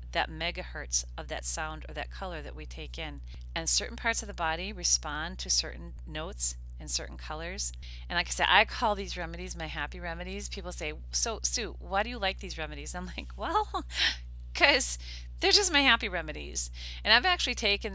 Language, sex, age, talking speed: English, female, 40-59, 195 wpm